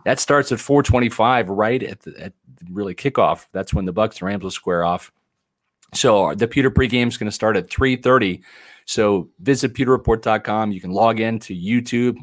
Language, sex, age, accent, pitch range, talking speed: English, male, 40-59, American, 105-120 Hz, 185 wpm